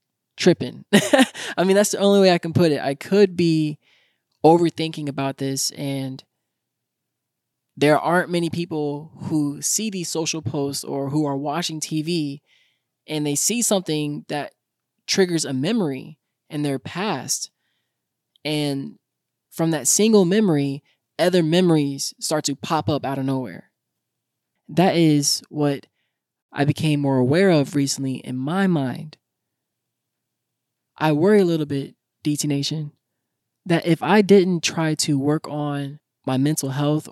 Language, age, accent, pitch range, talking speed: English, 20-39, American, 140-170 Hz, 140 wpm